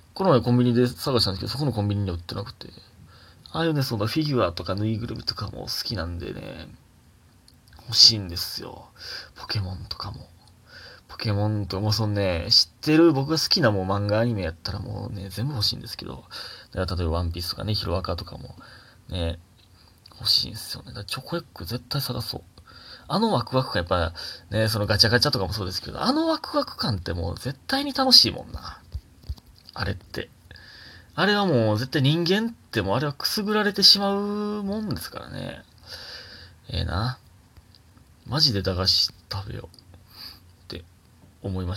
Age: 20-39